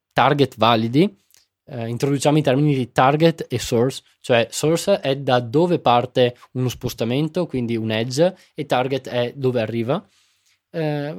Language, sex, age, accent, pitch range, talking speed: Italian, male, 20-39, native, 120-170 Hz, 145 wpm